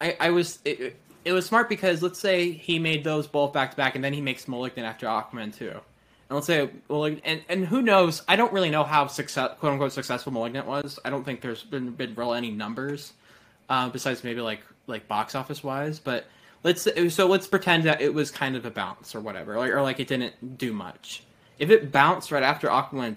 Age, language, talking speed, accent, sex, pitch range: 10-29, English, 230 wpm, American, male, 120-155 Hz